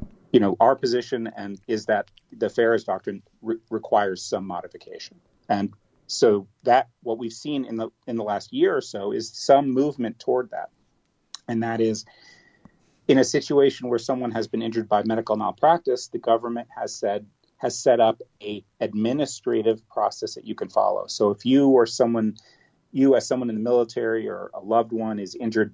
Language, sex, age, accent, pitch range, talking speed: English, male, 40-59, American, 105-120 Hz, 180 wpm